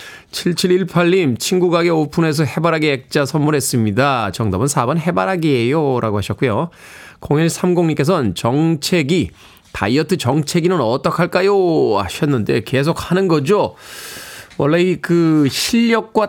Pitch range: 130-180 Hz